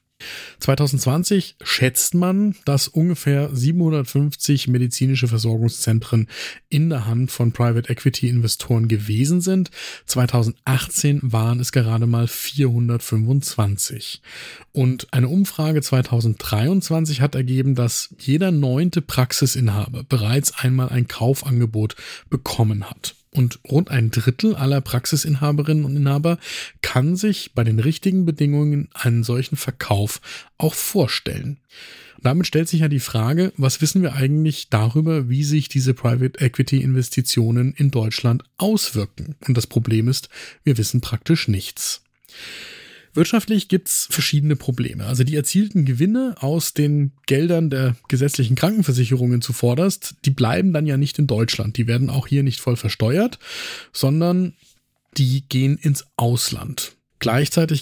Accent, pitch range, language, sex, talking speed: German, 120-150 Hz, German, male, 125 wpm